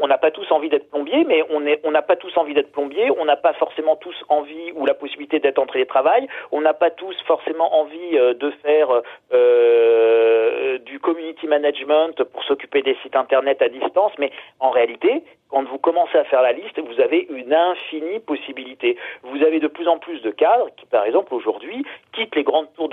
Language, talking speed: French, 210 wpm